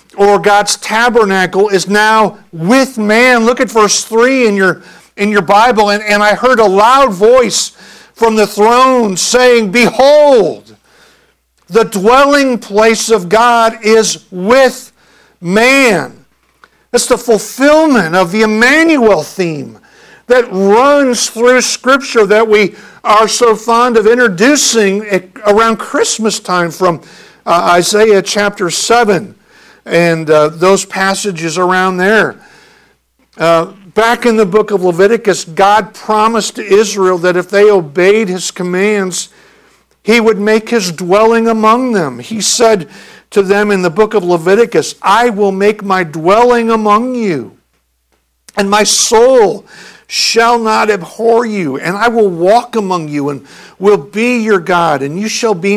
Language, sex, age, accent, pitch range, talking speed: English, male, 50-69, American, 190-230 Hz, 140 wpm